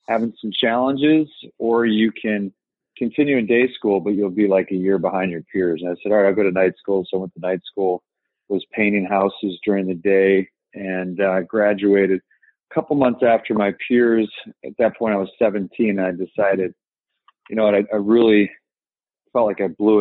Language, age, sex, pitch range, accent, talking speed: English, 40-59, male, 95-105 Hz, American, 210 wpm